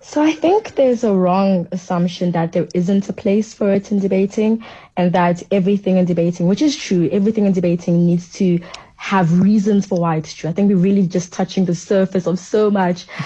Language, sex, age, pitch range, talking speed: English, female, 20-39, 175-205 Hz, 210 wpm